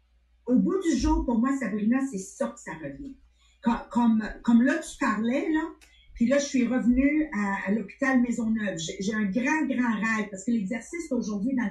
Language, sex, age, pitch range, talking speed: English, female, 50-69, 210-275 Hz, 200 wpm